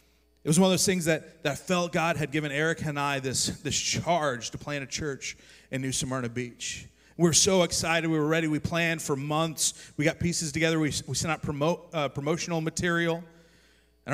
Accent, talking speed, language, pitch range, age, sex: American, 210 wpm, English, 120-165 Hz, 30-49, male